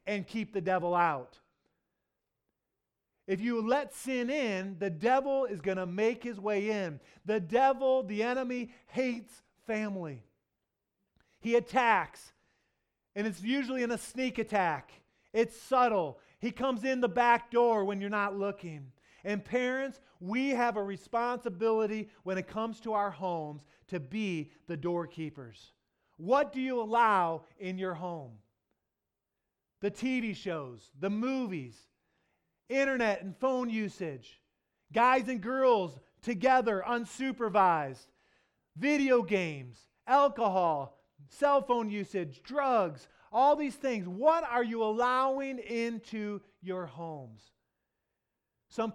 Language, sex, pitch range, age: English, male, 170-240 Hz, 40-59